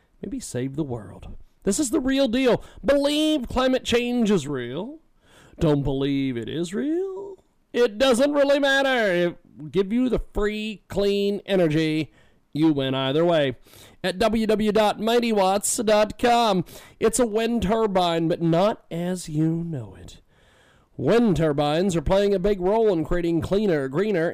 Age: 40-59